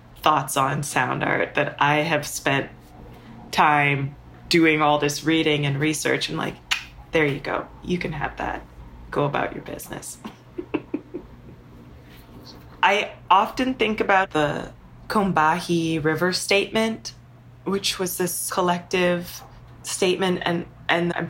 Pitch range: 125-175 Hz